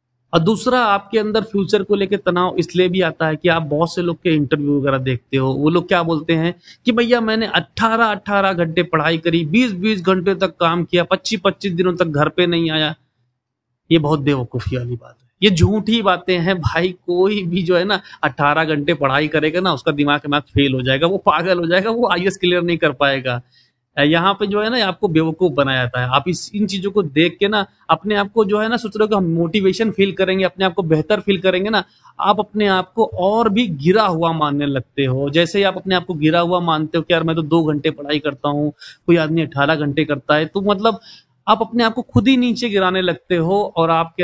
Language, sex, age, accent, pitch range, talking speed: Hindi, male, 30-49, native, 155-205 Hz, 230 wpm